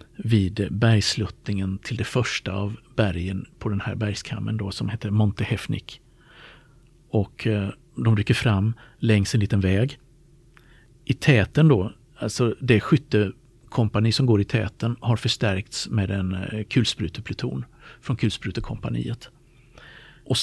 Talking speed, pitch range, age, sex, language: 135 wpm, 105-130 Hz, 50-69, male, Swedish